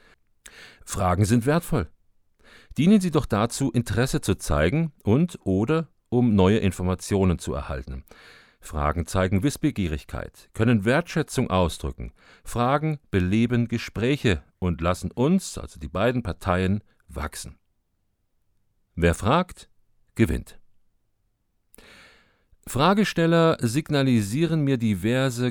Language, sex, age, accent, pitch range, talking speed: German, male, 50-69, German, 90-120 Hz, 95 wpm